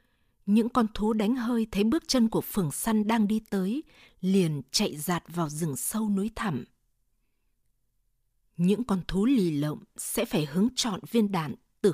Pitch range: 165-220 Hz